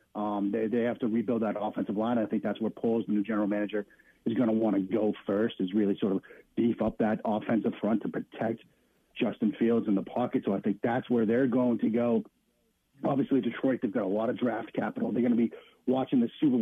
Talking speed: 235 wpm